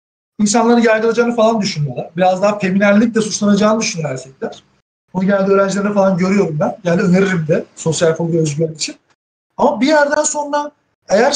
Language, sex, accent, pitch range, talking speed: Turkish, male, native, 180-235 Hz, 150 wpm